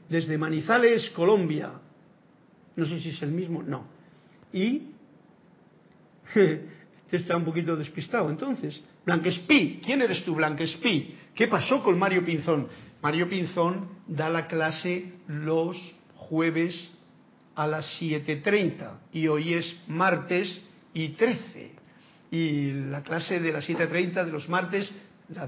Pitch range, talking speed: 160-205 Hz, 125 wpm